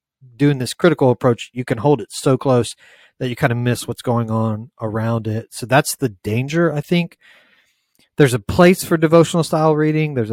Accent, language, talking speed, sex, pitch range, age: American, English, 200 wpm, male, 115-140 Hz, 30-49